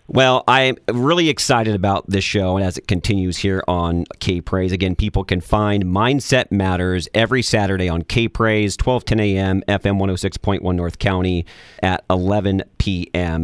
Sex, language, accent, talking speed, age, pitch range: male, English, American, 160 wpm, 40-59, 90-120 Hz